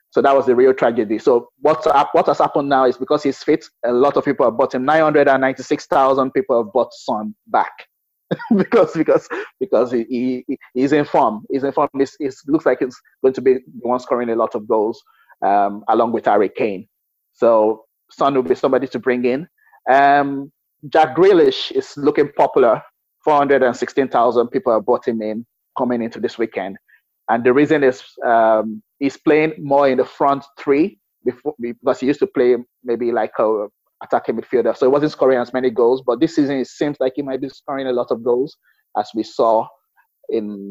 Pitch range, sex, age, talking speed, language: 120-155 Hz, male, 30-49, 190 wpm, English